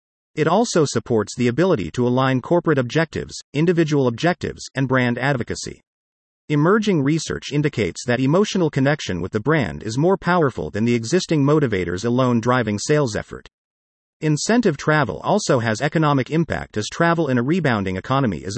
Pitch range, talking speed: 115-165 Hz, 150 wpm